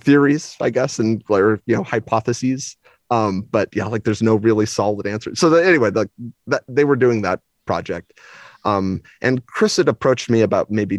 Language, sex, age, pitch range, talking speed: English, male, 30-49, 100-140 Hz, 190 wpm